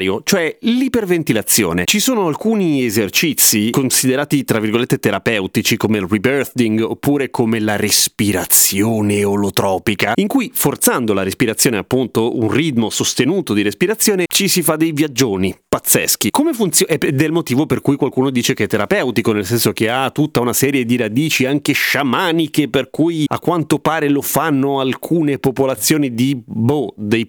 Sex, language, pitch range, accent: male, Italian, 110-155 Hz, native